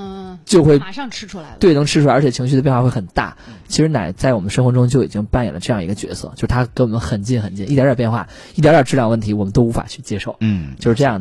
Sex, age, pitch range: male, 20-39, 110-135 Hz